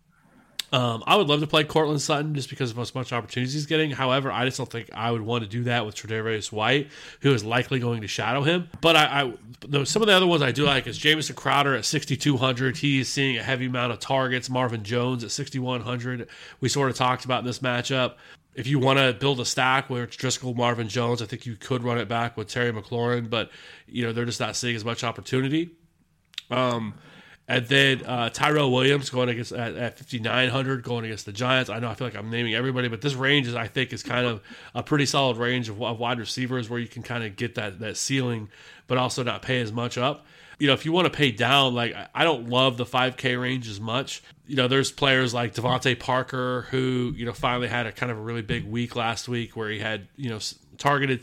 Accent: American